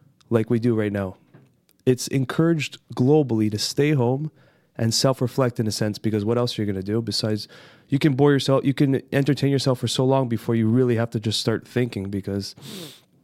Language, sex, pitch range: English, male, 115-140 Hz